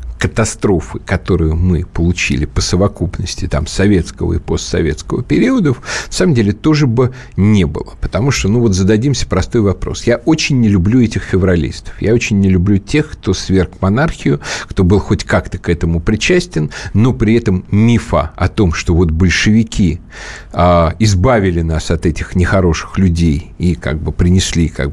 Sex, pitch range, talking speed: male, 85-110 Hz, 160 wpm